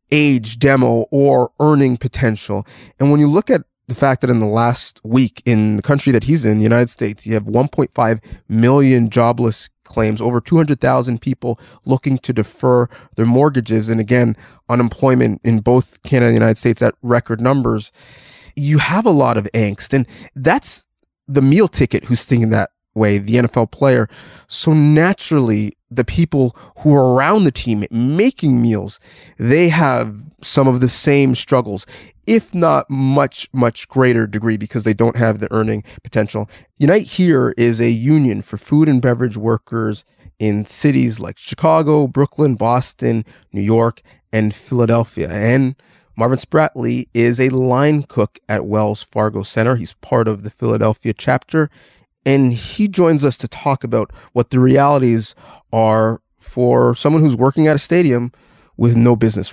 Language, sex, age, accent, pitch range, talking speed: English, male, 30-49, American, 110-140 Hz, 160 wpm